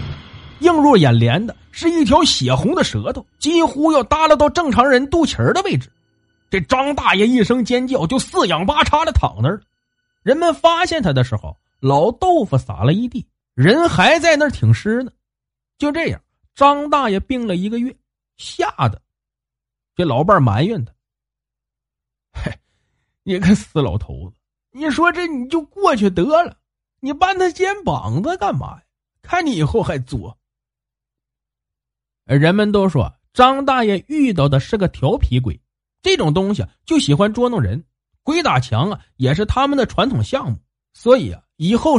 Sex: male